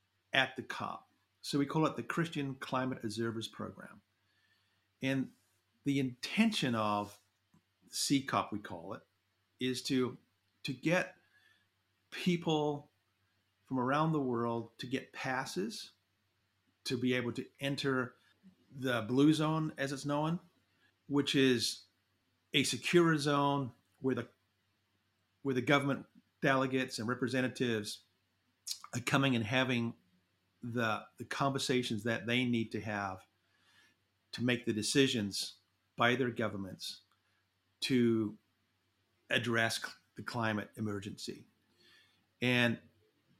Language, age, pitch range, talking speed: English, 50-69, 105-140 Hz, 110 wpm